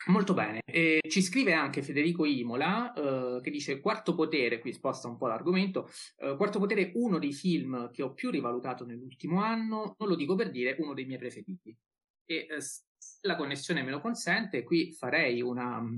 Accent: native